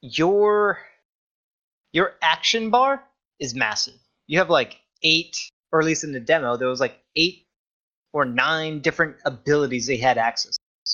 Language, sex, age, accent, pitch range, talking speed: English, male, 30-49, American, 135-170 Hz, 155 wpm